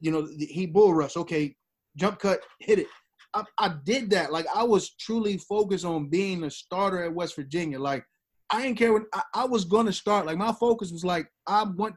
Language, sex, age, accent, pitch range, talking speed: English, male, 20-39, American, 175-235 Hz, 220 wpm